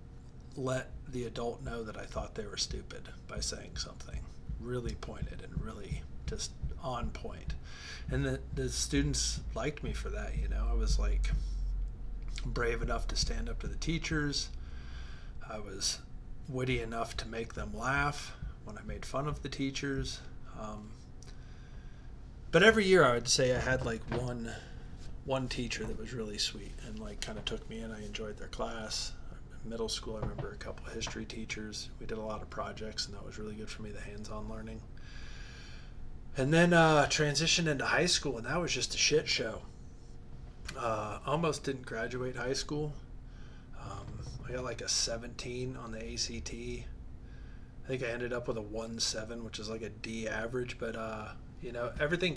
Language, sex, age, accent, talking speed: English, male, 40-59, American, 180 wpm